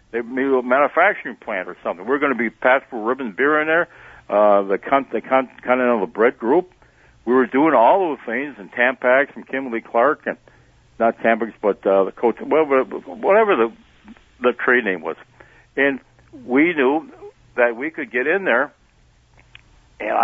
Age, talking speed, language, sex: 60-79, 180 wpm, English, male